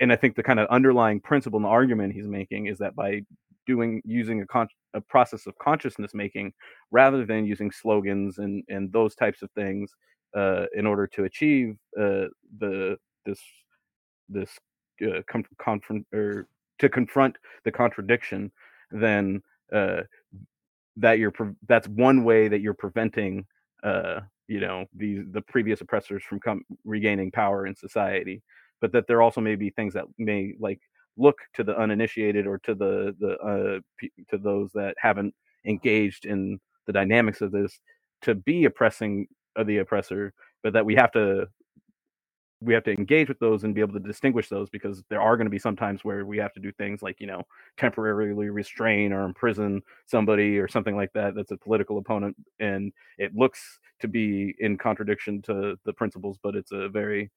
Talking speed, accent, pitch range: 180 wpm, American, 100-115 Hz